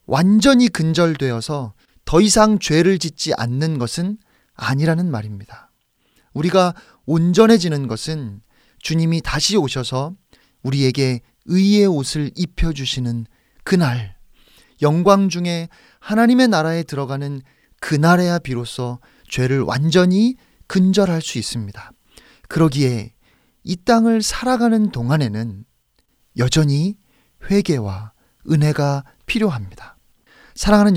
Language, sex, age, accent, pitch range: Korean, male, 30-49, native, 135-215 Hz